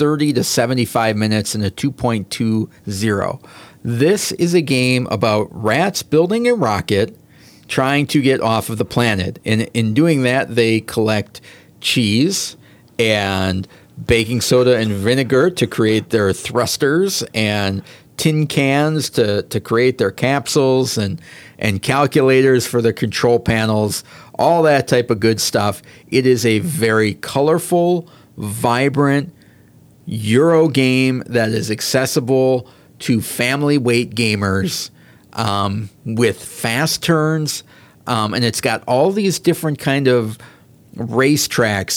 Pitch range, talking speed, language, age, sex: 110-145 Hz, 125 wpm, English, 40-59, male